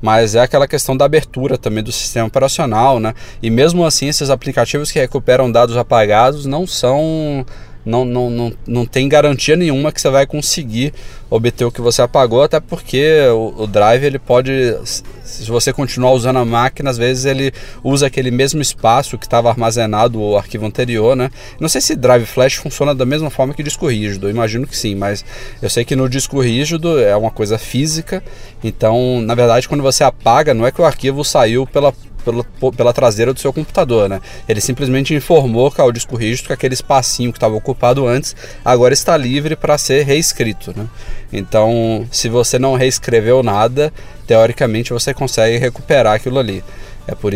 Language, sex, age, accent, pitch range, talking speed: Portuguese, male, 20-39, Brazilian, 110-135 Hz, 185 wpm